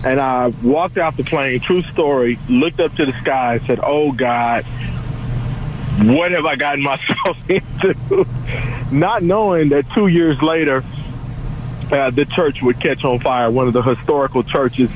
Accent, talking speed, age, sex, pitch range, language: American, 165 wpm, 40-59, male, 125-145 Hz, English